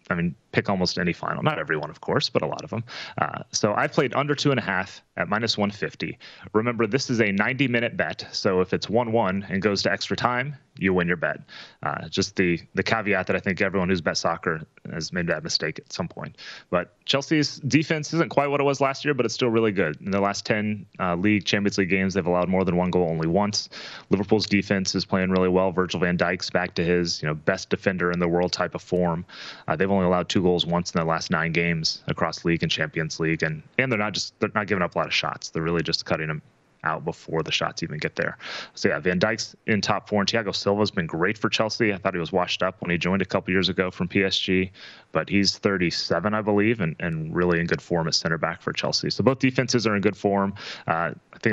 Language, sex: English, male